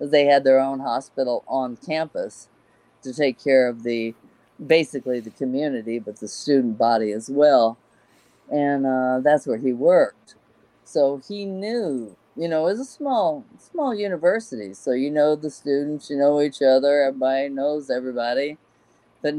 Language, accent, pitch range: English, American, 130-155 Hz